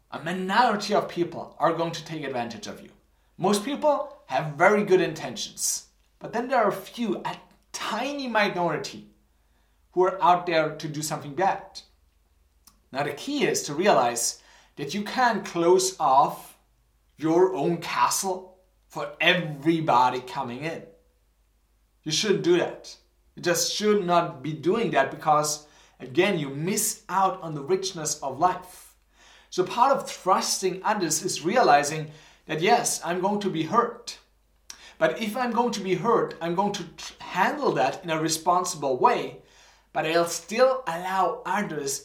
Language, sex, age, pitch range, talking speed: English, male, 30-49, 150-195 Hz, 155 wpm